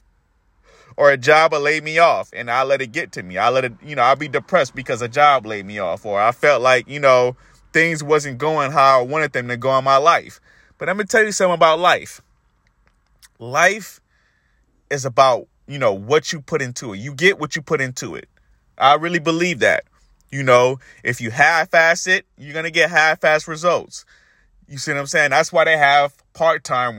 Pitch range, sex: 135-170 Hz, male